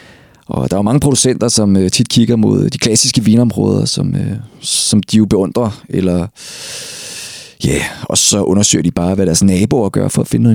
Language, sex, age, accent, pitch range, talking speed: Danish, male, 30-49, native, 90-125 Hz, 195 wpm